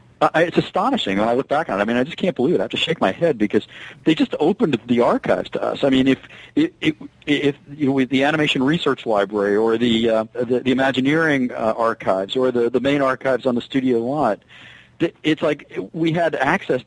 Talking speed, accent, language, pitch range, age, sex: 230 wpm, American, English, 110-145 Hz, 40-59, male